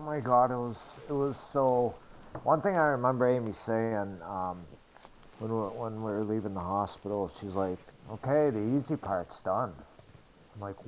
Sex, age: male, 60-79